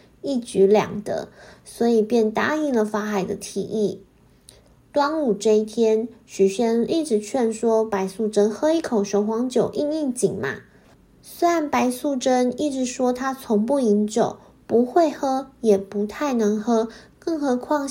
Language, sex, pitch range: Chinese, female, 210-265 Hz